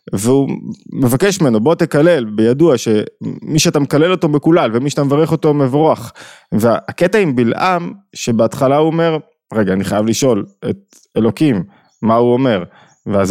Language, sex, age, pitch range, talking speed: Hebrew, male, 20-39, 115-160 Hz, 145 wpm